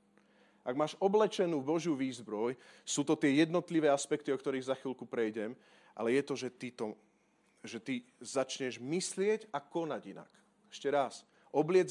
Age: 40-59